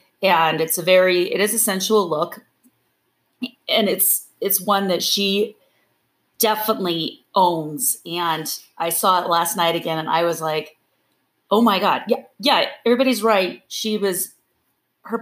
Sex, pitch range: female, 160-205 Hz